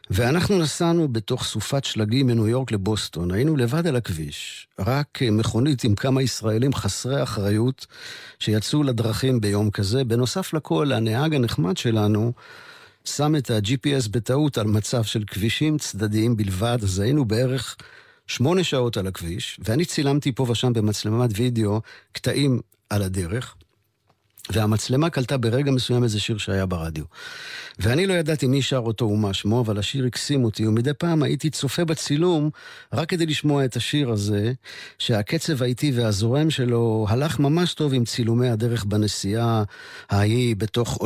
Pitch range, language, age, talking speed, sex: 105-140 Hz, Hebrew, 50-69, 145 wpm, male